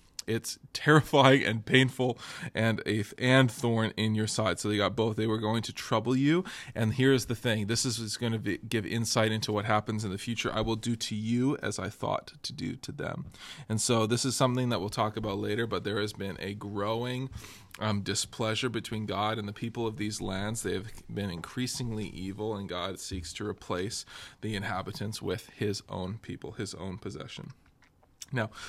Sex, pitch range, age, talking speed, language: male, 105-125 Hz, 20-39, 205 wpm, English